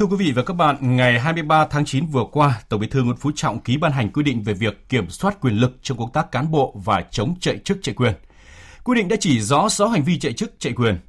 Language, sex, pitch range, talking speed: Vietnamese, male, 110-170 Hz, 280 wpm